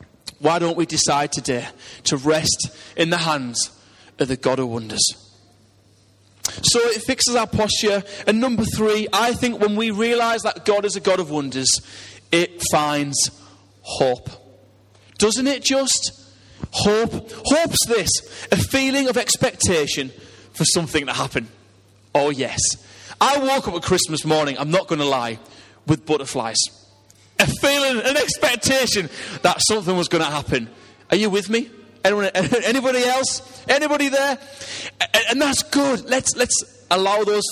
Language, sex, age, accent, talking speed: English, male, 30-49, British, 150 wpm